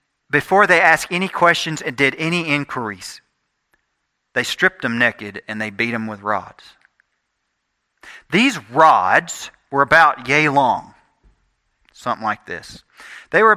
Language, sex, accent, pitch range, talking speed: English, male, American, 120-190 Hz, 135 wpm